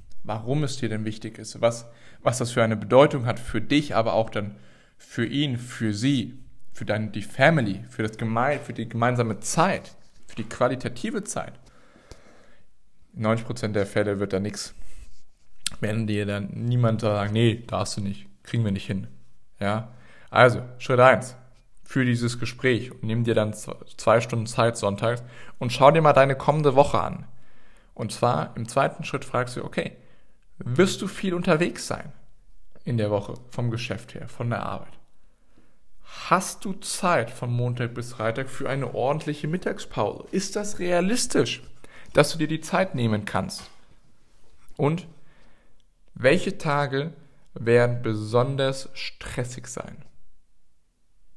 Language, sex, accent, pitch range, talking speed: German, male, German, 110-140 Hz, 150 wpm